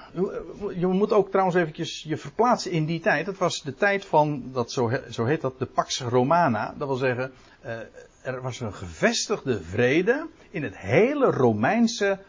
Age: 60-79